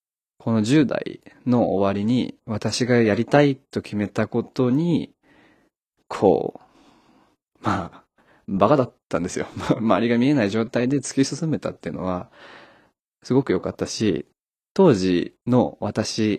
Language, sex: Japanese, male